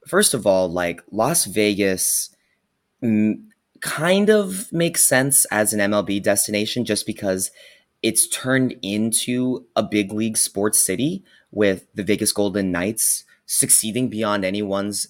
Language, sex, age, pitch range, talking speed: English, male, 20-39, 95-125 Hz, 125 wpm